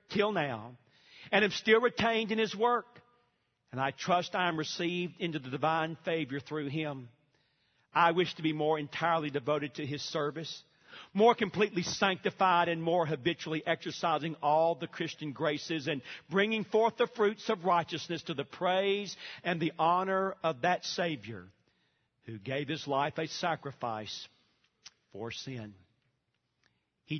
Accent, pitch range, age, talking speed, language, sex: American, 135-170 Hz, 50-69, 150 wpm, English, male